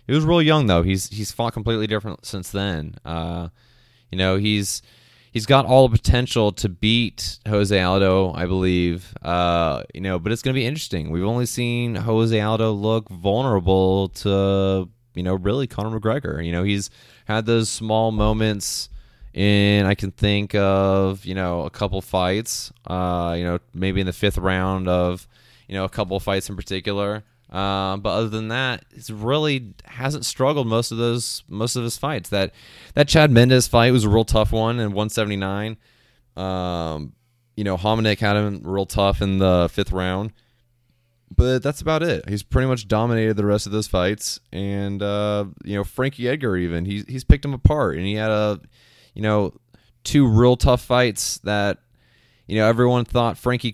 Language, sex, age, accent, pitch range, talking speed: English, male, 20-39, American, 95-120 Hz, 180 wpm